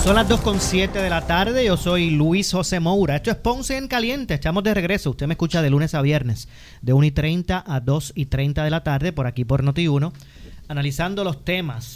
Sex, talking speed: male, 225 wpm